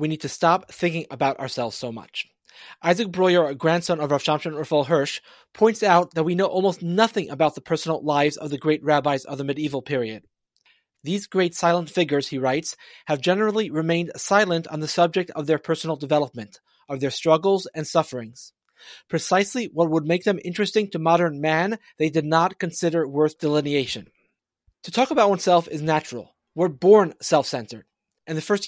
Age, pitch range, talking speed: 30-49, 150-185 Hz, 180 wpm